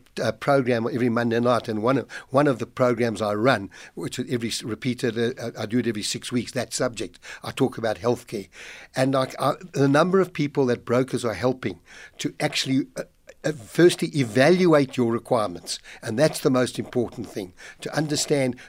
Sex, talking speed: male, 180 wpm